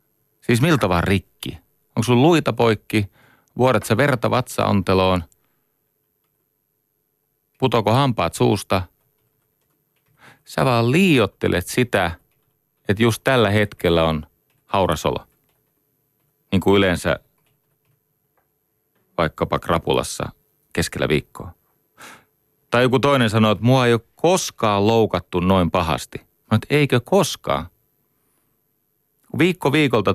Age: 40-59